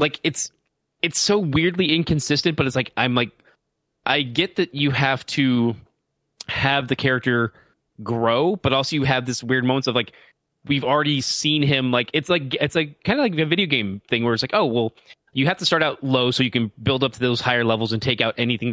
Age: 20-39